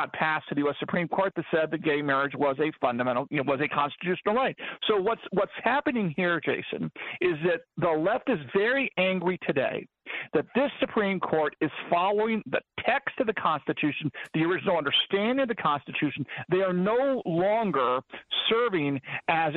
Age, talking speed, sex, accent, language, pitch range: 50-69, 175 wpm, male, American, English, 155-205 Hz